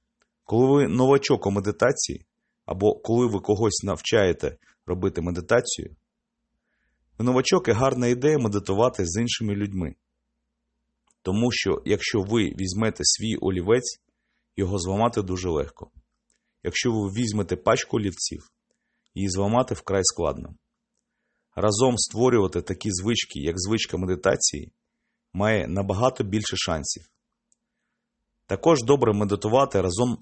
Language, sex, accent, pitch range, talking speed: Ukrainian, male, native, 95-125 Hz, 110 wpm